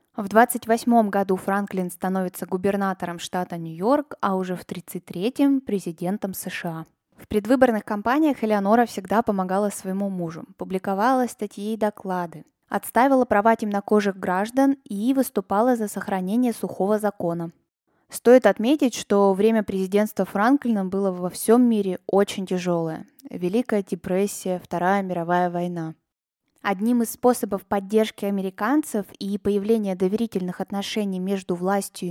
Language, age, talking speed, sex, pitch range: Russian, 20-39, 120 wpm, female, 190-230 Hz